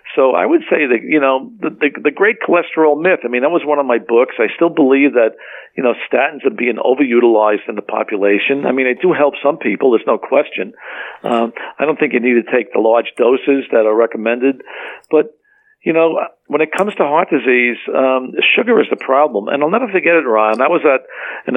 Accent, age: American, 50-69